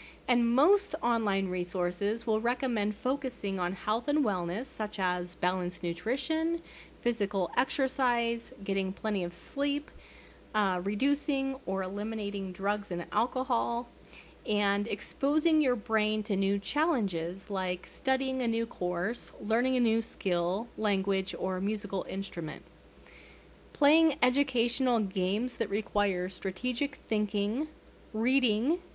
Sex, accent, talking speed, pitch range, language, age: female, American, 115 wpm, 190-255 Hz, English, 30-49